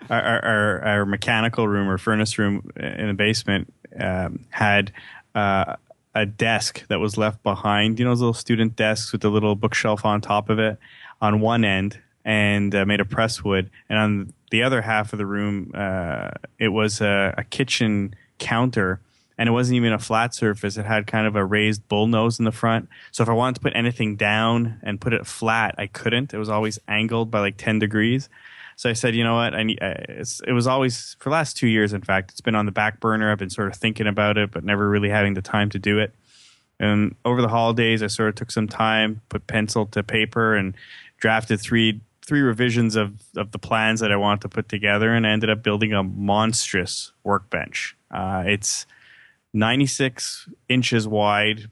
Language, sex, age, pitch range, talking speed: English, male, 20-39, 105-115 Hz, 210 wpm